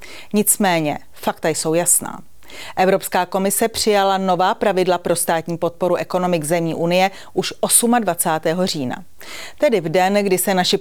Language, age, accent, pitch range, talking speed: Czech, 30-49, native, 175-205 Hz, 135 wpm